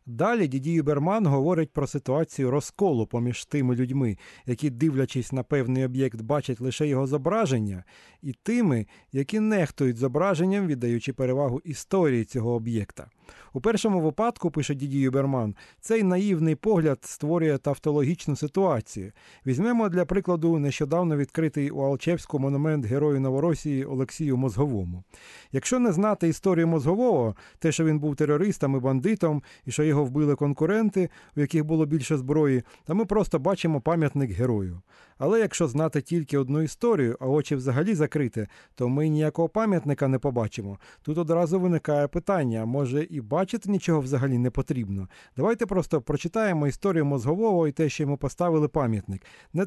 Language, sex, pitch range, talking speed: Ukrainian, male, 135-175 Hz, 145 wpm